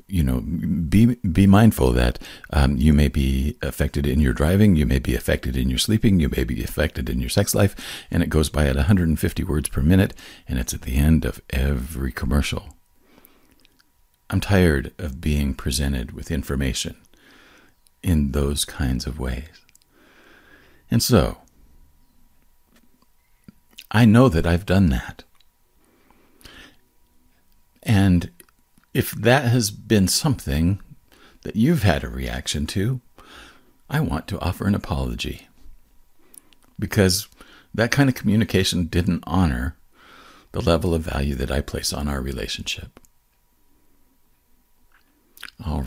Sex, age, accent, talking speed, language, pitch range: male, 50-69, American, 135 wpm, English, 65-95 Hz